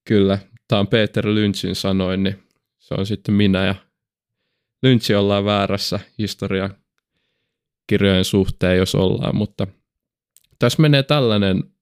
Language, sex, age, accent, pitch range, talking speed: Finnish, male, 20-39, native, 95-110 Hz, 120 wpm